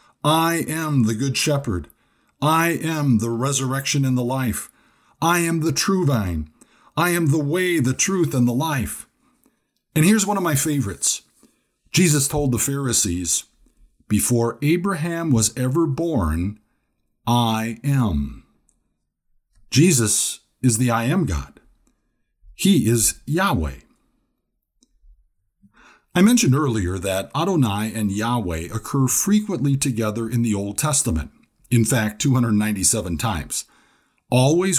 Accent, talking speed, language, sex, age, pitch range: American, 120 wpm, English, male, 50-69, 105-150 Hz